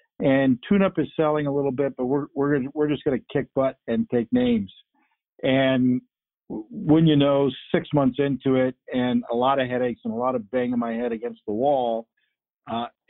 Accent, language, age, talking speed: American, English, 50-69, 200 wpm